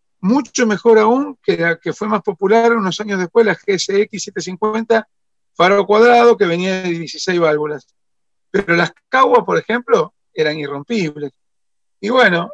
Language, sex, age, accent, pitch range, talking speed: Spanish, male, 50-69, Argentinian, 160-220 Hz, 150 wpm